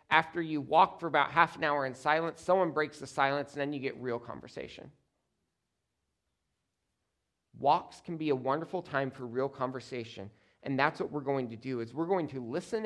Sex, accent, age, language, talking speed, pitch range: male, American, 40-59, English, 190 wpm, 120-170 Hz